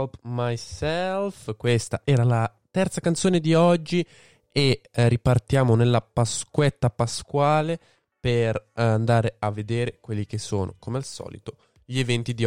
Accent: native